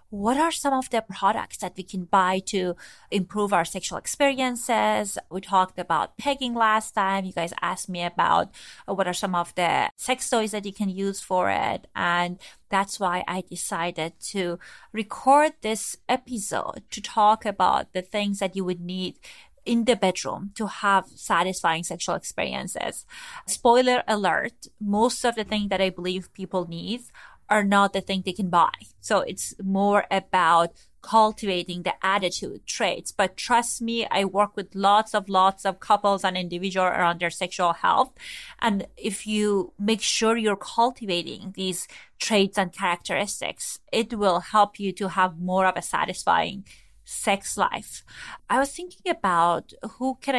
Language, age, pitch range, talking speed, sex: English, 30-49, 185-215 Hz, 165 wpm, female